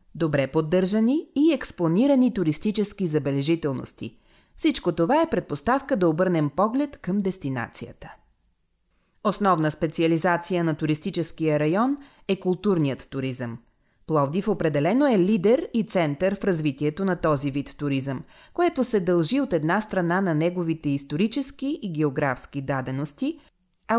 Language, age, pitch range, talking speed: Bulgarian, 30-49, 155-225 Hz, 120 wpm